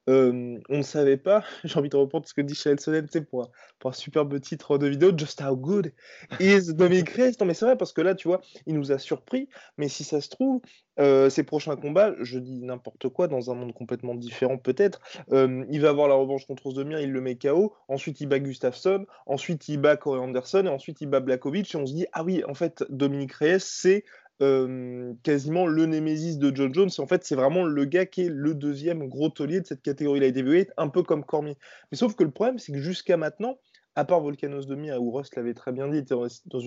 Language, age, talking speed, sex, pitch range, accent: French, 20-39, 240 wpm, male, 135-175 Hz, French